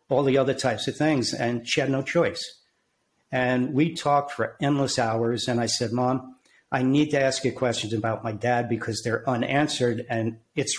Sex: male